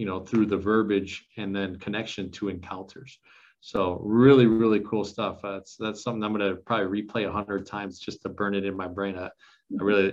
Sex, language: male, English